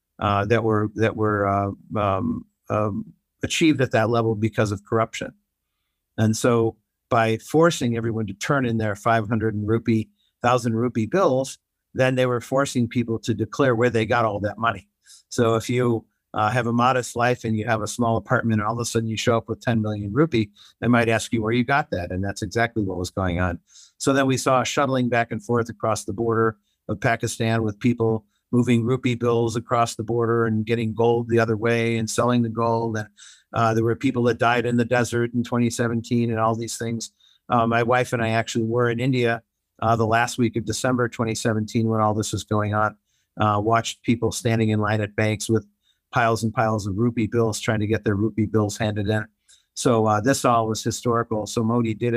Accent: American